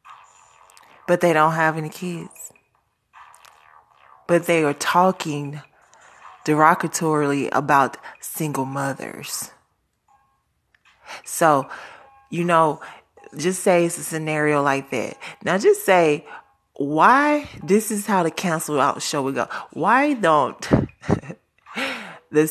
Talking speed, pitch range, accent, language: 105 wpm, 155-195 Hz, American, English